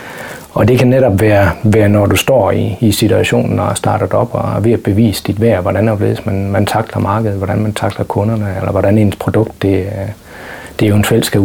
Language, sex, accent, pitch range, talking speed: Danish, male, native, 100-115 Hz, 190 wpm